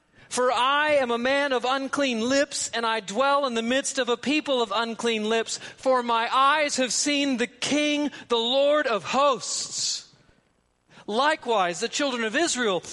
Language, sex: English, male